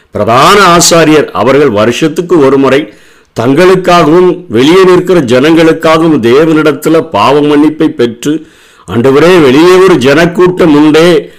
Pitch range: 130-175 Hz